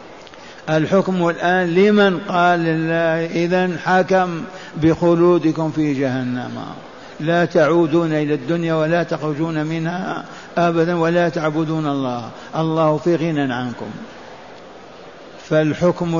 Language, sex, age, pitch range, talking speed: Arabic, male, 60-79, 160-175 Hz, 95 wpm